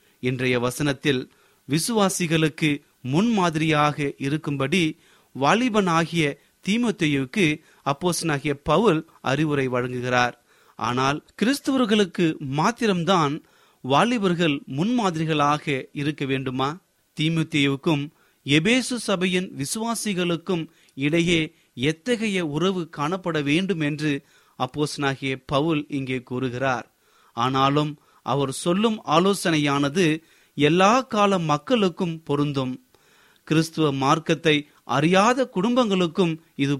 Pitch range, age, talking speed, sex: 140-185 Hz, 30-49, 70 wpm, male